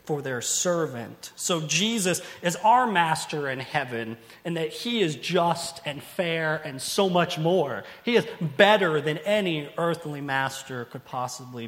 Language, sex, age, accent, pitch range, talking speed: English, male, 30-49, American, 155-205 Hz, 155 wpm